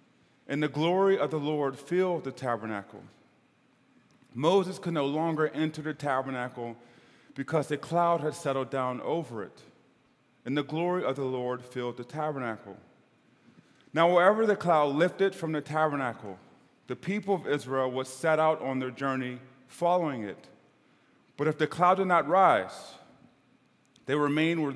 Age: 30-49